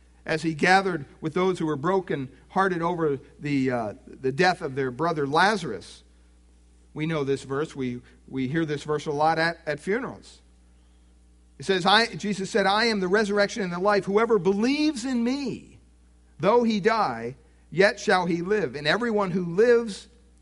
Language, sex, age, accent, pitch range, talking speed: English, male, 50-69, American, 125-190 Hz, 170 wpm